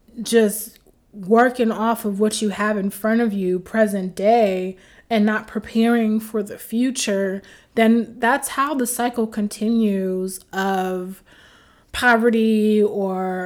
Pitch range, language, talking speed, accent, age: 205-230 Hz, English, 125 wpm, American, 20-39